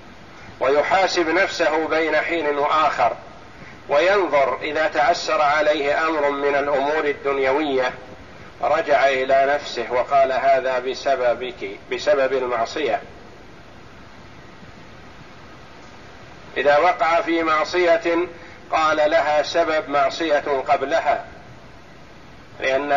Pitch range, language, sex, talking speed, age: 145-175 Hz, Arabic, male, 80 wpm, 50-69